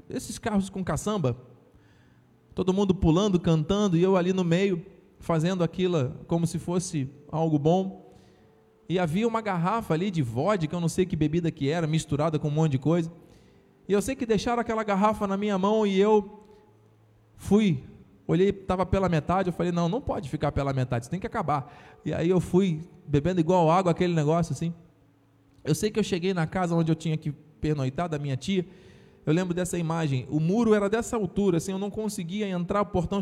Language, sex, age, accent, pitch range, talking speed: Portuguese, male, 20-39, Brazilian, 160-200 Hz, 200 wpm